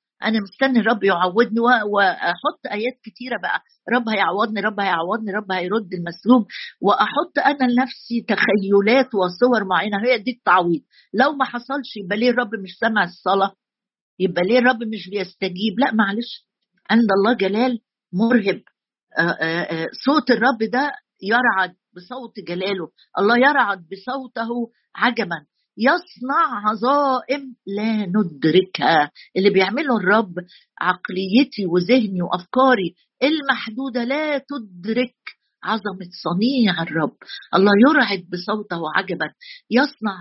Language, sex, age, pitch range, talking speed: Arabic, female, 50-69, 190-250 Hz, 115 wpm